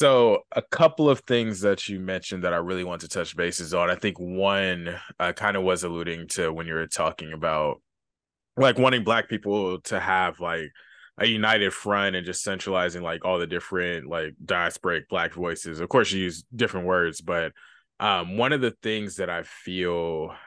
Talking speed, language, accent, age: 195 wpm, English, American, 20-39